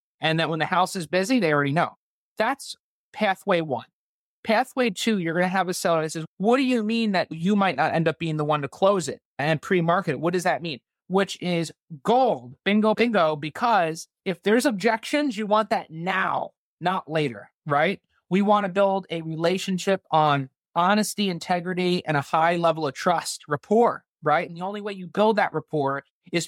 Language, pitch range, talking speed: English, 160-200 Hz, 200 wpm